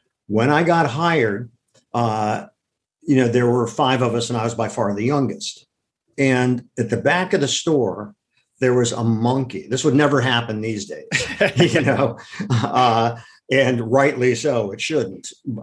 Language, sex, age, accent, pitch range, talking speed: English, male, 50-69, American, 115-140 Hz, 170 wpm